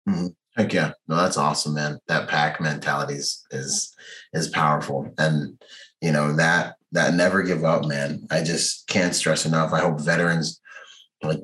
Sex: male